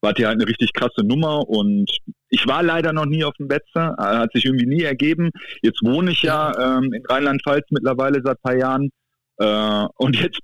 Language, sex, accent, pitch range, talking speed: German, male, German, 110-150 Hz, 205 wpm